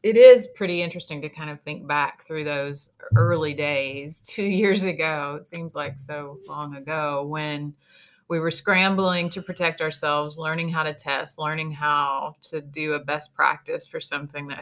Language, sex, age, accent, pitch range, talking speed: English, female, 30-49, American, 145-170 Hz, 175 wpm